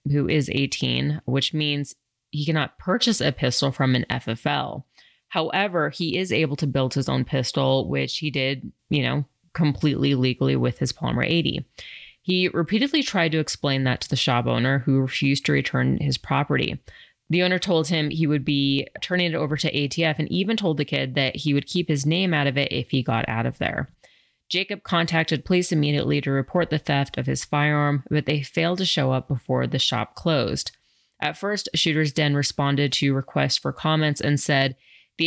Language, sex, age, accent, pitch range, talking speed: English, female, 30-49, American, 135-165 Hz, 195 wpm